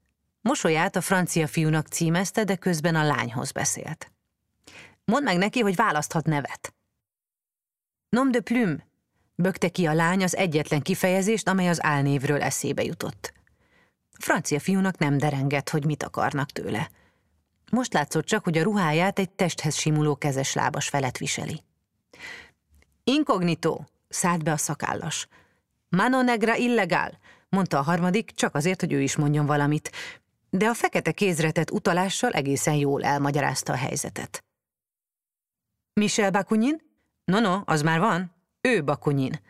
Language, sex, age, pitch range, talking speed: Hungarian, female, 30-49, 150-195 Hz, 140 wpm